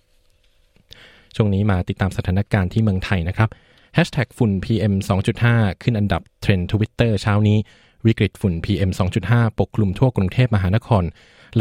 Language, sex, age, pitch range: Thai, male, 20-39, 95-115 Hz